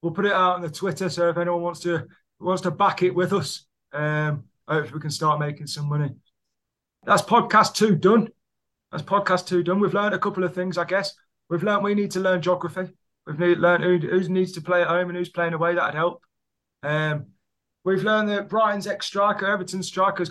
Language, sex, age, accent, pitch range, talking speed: English, male, 20-39, British, 165-200 Hz, 220 wpm